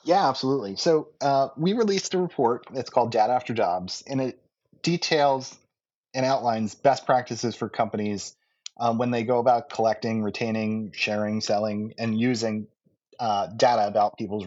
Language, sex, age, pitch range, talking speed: English, male, 30-49, 110-140 Hz, 155 wpm